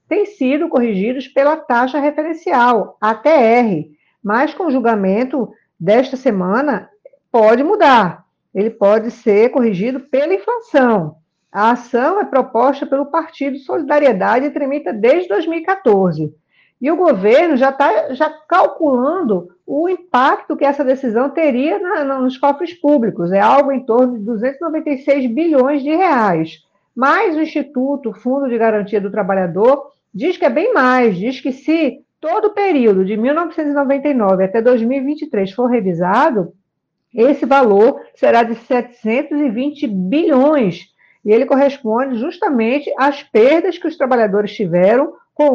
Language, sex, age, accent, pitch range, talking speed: Portuguese, female, 50-69, Brazilian, 215-290 Hz, 130 wpm